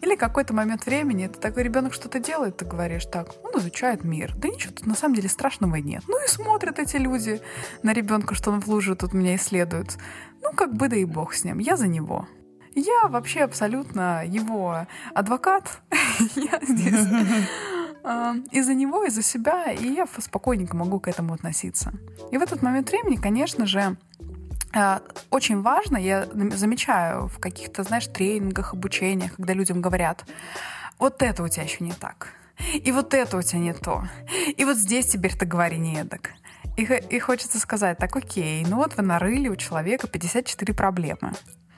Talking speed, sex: 175 wpm, female